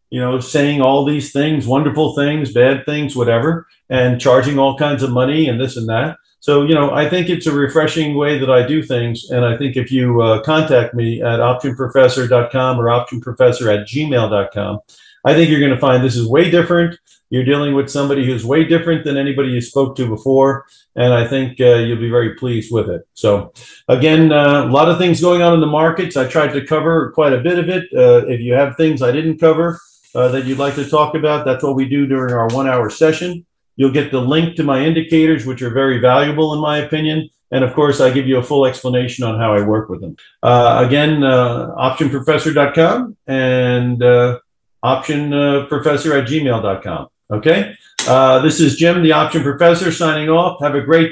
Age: 50-69